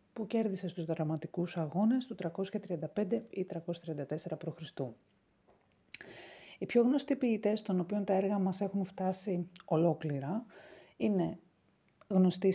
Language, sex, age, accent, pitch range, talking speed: Greek, female, 30-49, native, 155-205 Hz, 115 wpm